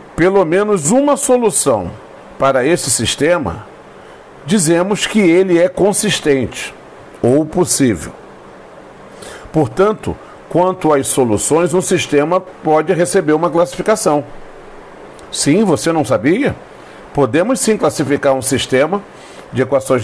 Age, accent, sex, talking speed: 50-69, Brazilian, male, 105 wpm